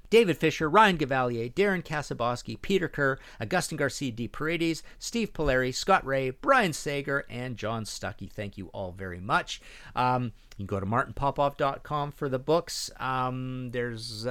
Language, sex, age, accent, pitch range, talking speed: English, male, 50-69, American, 105-155 Hz, 155 wpm